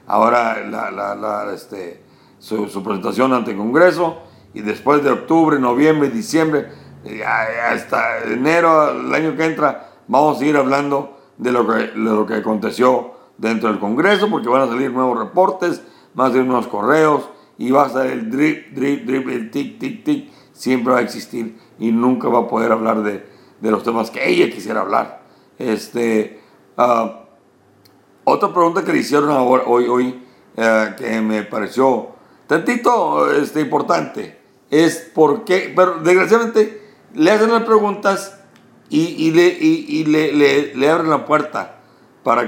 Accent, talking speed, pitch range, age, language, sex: Mexican, 165 wpm, 115-165 Hz, 60-79, English, male